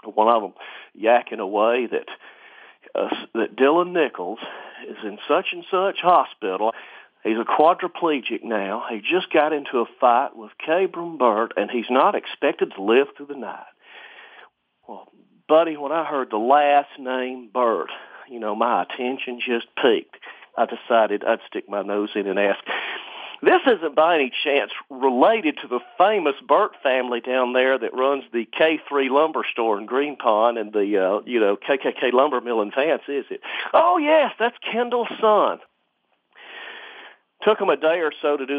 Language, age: English, 50-69